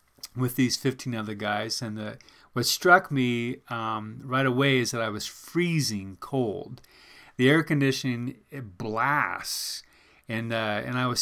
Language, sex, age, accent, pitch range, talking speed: English, male, 40-59, American, 115-140 Hz, 150 wpm